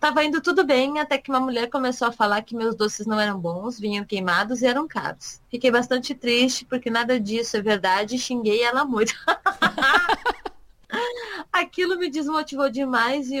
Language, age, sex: Portuguese, 20-39, female